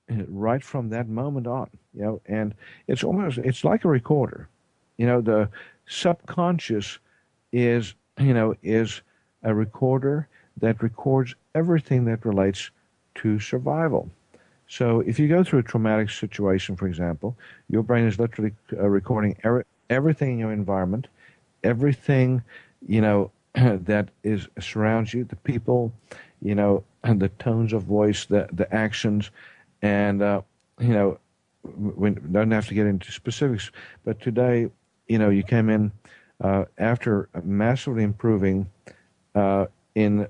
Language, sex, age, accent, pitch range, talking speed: English, male, 50-69, American, 100-120 Hz, 140 wpm